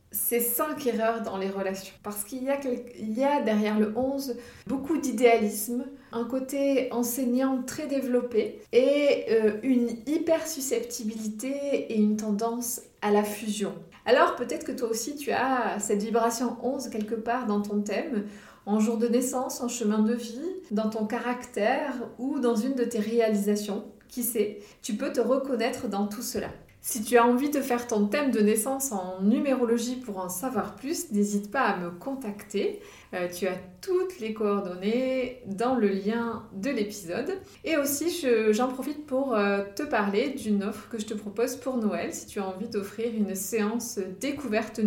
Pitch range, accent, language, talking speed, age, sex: 210-255 Hz, French, French, 170 wpm, 30-49, female